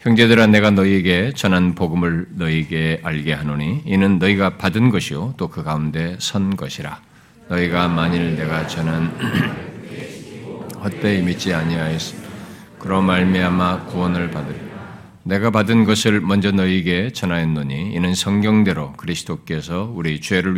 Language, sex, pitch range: Korean, male, 85-105 Hz